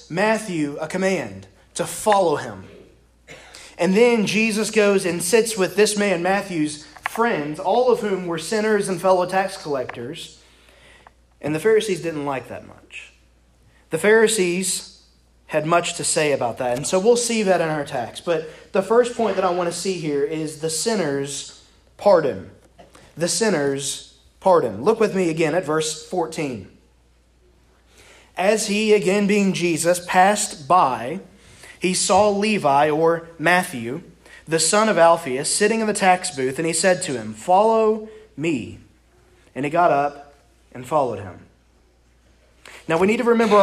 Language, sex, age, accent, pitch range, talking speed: English, male, 30-49, American, 150-205 Hz, 155 wpm